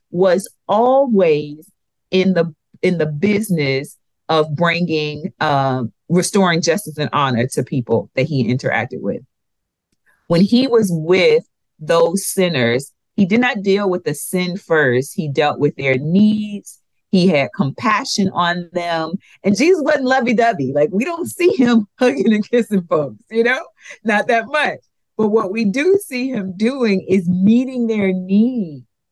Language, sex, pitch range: English, female, 150-205 Hz